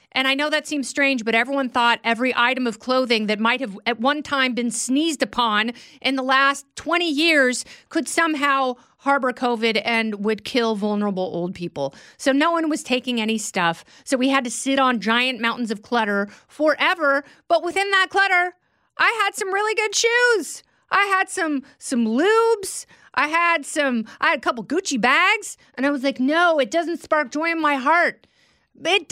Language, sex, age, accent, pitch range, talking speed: English, female, 40-59, American, 240-330 Hz, 185 wpm